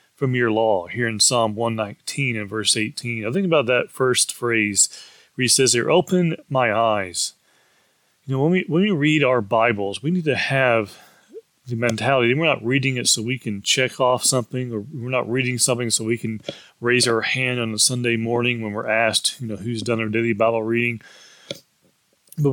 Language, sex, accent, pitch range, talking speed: English, male, American, 115-150 Hz, 195 wpm